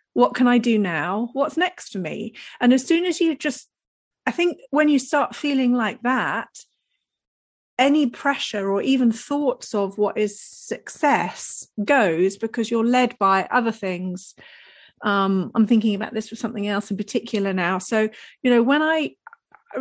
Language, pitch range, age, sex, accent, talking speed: English, 200-245 Hz, 40-59, female, British, 170 wpm